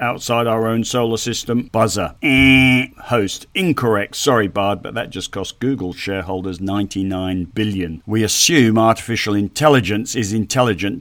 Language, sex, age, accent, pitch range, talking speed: English, male, 50-69, British, 105-135 Hz, 135 wpm